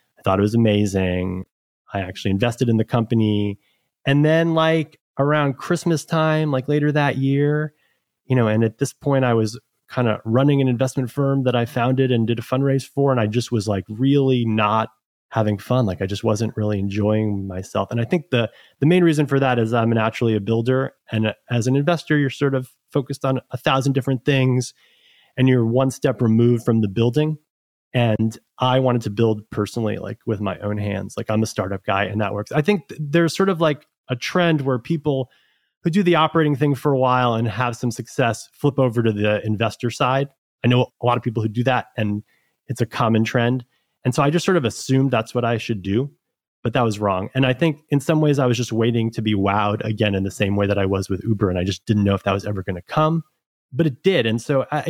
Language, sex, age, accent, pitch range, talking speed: English, male, 30-49, American, 110-140 Hz, 230 wpm